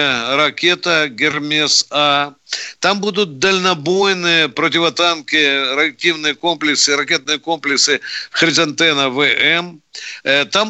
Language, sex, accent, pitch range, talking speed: Russian, male, native, 150-180 Hz, 80 wpm